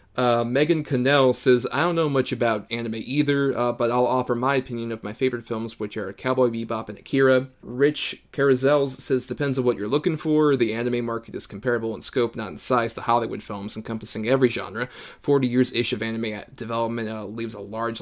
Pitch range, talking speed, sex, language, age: 115-130 Hz, 205 wpm, male, English, 30-49